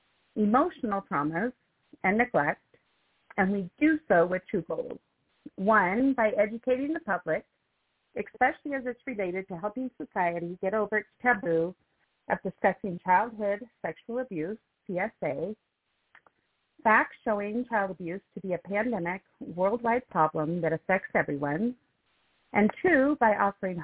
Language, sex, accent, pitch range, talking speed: English, female, American, 190-245 Hz, 125 wpm